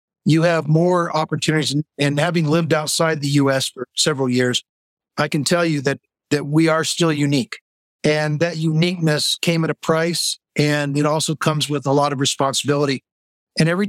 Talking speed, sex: 175 wpm, male